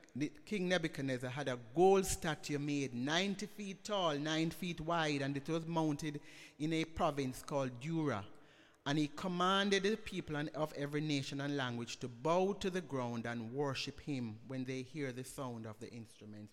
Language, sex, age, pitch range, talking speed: English, male, 60-79, 140-185 Hz, 180 wpm